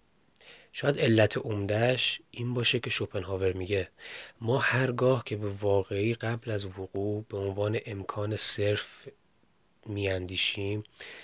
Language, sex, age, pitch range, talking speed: Persian, male, 30-49, 100-115 Hz, 110 wpm